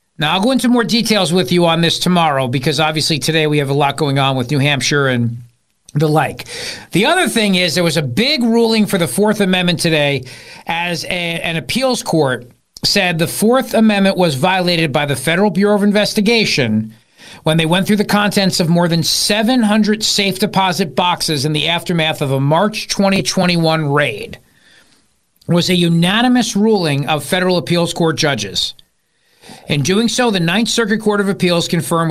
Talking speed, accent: 180 wpm, American